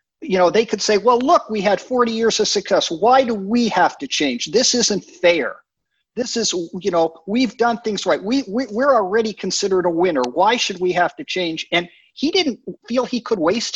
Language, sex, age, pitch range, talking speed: English, male, 50-69, 180-245 Hz, 220 wpm